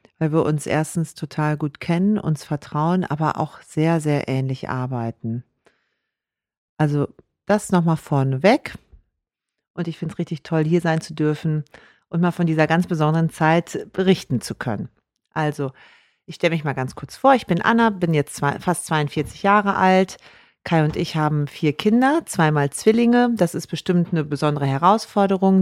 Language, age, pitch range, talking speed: German, 40-59, 150-185 Hz, 165 wpm